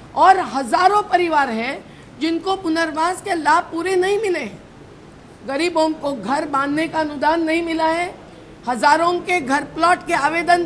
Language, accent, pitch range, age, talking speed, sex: English, Indian, 290-345 Hz, 50-69, 145 wpm, female